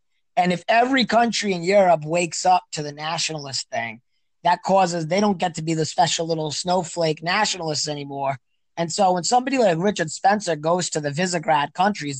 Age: 20-39